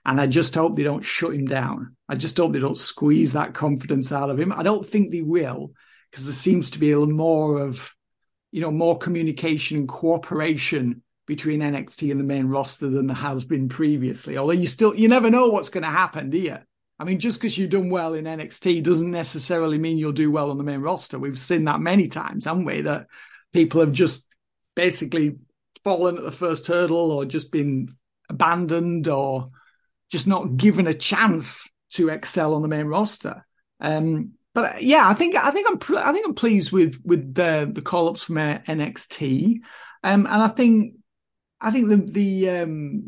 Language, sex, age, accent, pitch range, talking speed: English, male, 50-69, British, 150-200 Hz, 200 wpm